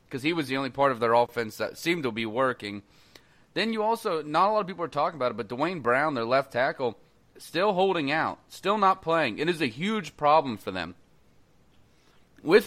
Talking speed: 220 wpm